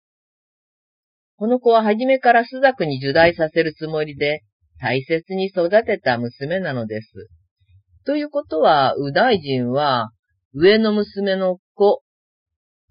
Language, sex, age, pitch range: Japanese, female, 40-59, 125-185 Hz